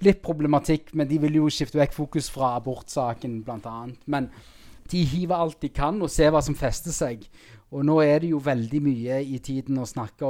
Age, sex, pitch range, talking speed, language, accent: 20-39, male, 120-140 Hz, 220 wpm, English, Norwegian